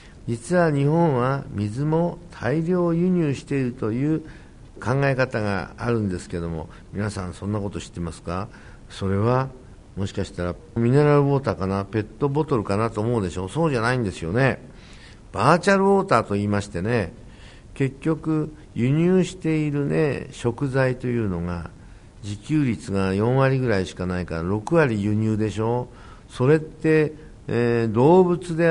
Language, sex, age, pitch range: Japanese, male, 60-79, 100-155 Hz